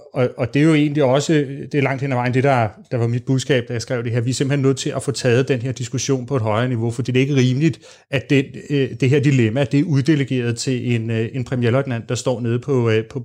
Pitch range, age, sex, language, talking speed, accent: 125-140 Hz, 30-49, male, Danish, 270 wpm, native